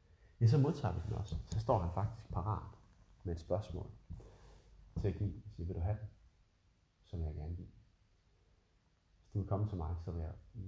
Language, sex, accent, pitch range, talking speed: Danish, male, native, 90-105 Hz, 200 wpm